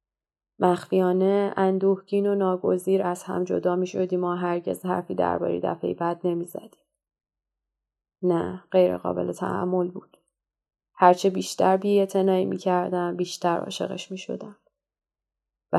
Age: 20-39